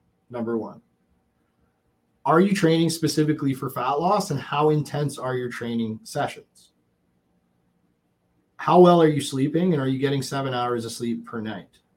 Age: 30-49